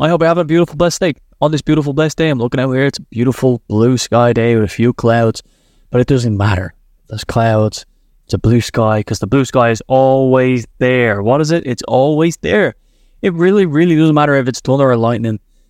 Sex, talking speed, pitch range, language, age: male, 230 wpm, 110-145 Hz, English, 20-39